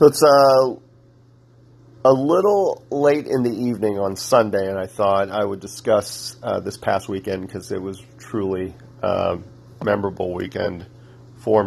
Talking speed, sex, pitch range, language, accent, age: 150 wpm, male, 95-120 Hz, English, American, 40-59